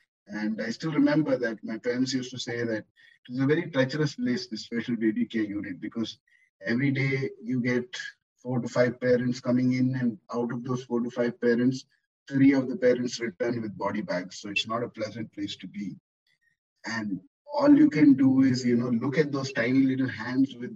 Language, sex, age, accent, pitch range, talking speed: English, male, 30-49, Indian, 120-150 Hz, 205 wpm